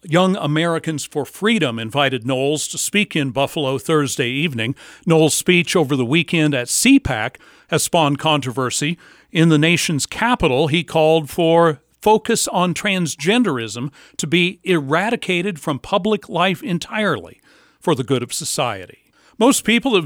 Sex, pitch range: male, 145-195 Hz